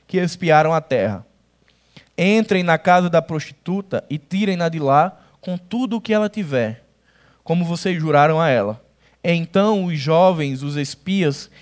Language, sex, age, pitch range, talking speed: Portuguese, male, 20-39, 155-205 Hz, 150 wpm